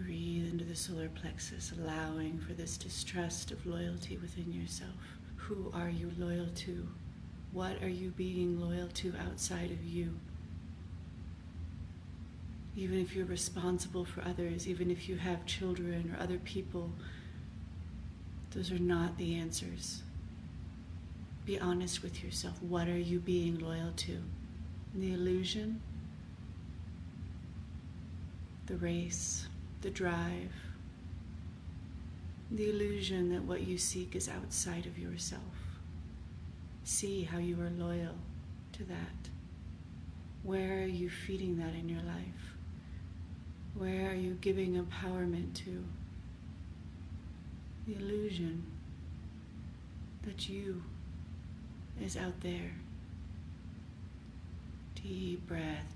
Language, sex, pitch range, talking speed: English, female, 85-95 Hz, 110 wpm